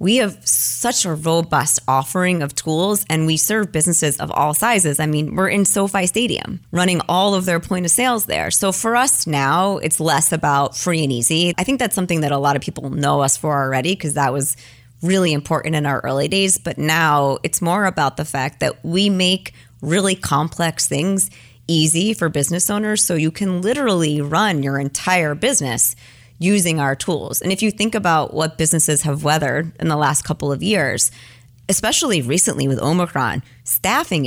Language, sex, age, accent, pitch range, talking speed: English, female, 30-49, American, 145-195 Hz, 190 wpm